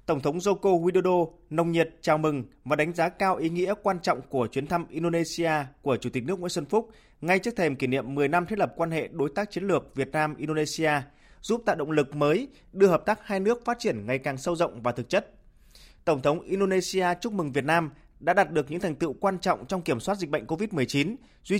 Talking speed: 240 wpm